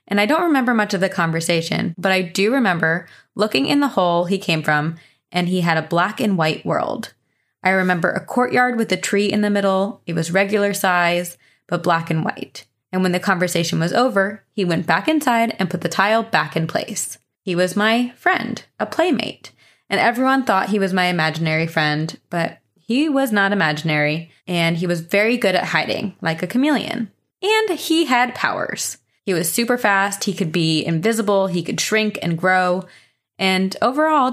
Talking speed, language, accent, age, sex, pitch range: 190 wpm, English, American, 20-39, female, 170-230 Hz